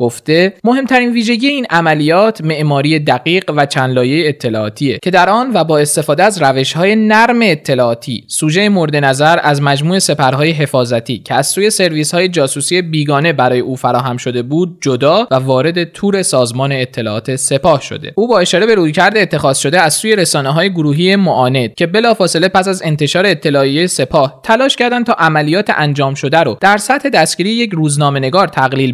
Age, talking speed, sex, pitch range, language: 20-39, 165 wpm, male, 135-185 Hz, Persian